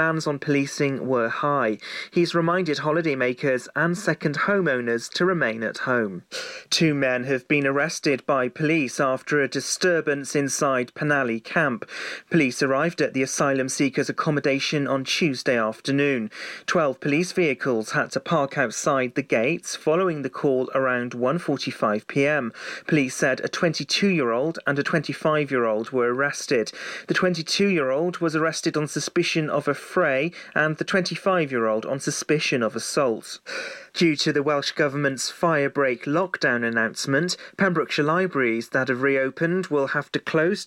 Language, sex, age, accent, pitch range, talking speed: English, male, 30-49, British, 130-160 Hz, 155 wpm